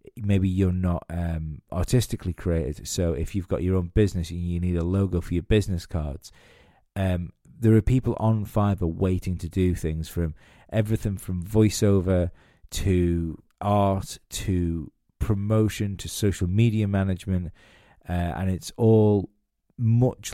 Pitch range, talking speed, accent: 85-110 Hz, 145 wpm, British